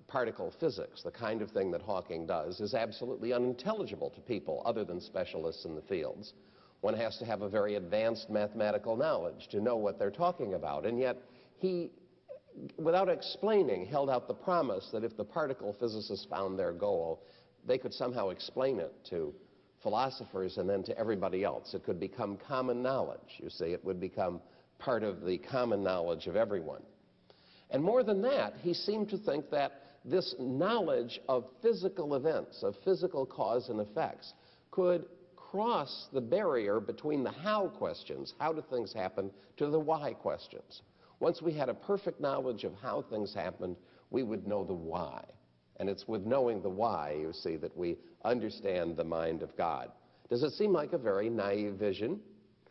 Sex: male